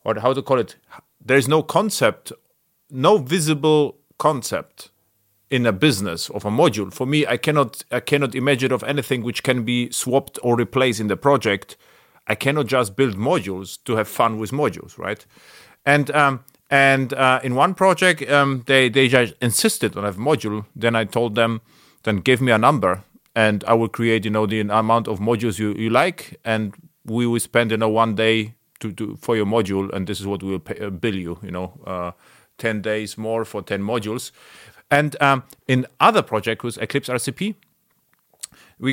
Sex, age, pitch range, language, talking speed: male, 40-59, 110-140 Hz, English, 190 wpm